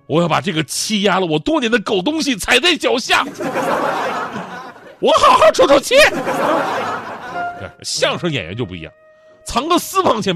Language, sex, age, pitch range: Chinese, male, 30-49, 135-210 Hz